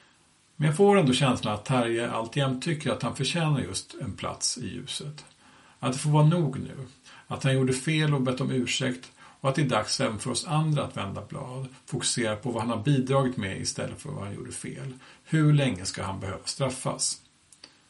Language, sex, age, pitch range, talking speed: Swedish, male, 50-69, 120-145 Hz, 205 wpm